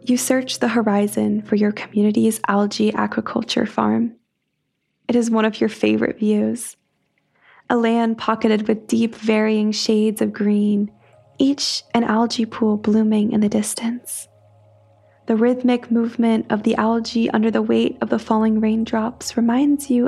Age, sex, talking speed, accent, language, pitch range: 20-39, female, 145 wpm, American, English, 195-235 Hz